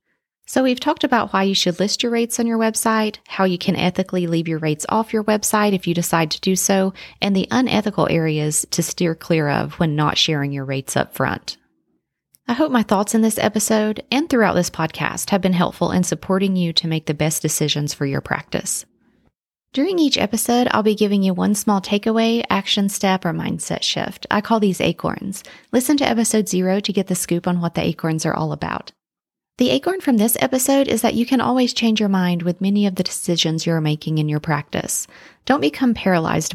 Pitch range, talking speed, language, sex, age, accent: 170-225 Hz, 210 wpm, English, female, 30-49, American